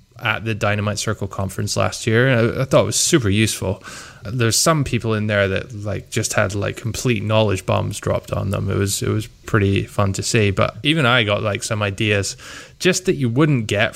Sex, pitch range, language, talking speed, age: male, 105-120 Hz, English, 220 wpm, 20-39